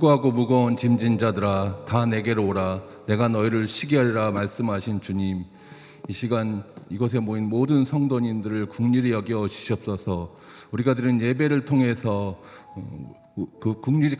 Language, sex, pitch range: Korean, male, 110-140 Hz